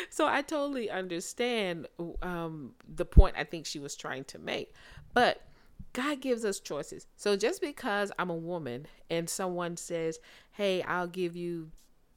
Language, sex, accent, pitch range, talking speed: English, female, American, 160-215 Hz, 160 wpm